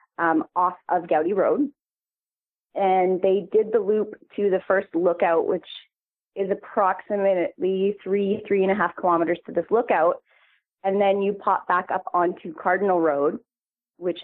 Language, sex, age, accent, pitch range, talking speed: English, female, 30-49, American, 175-205 Hz, 150 wpm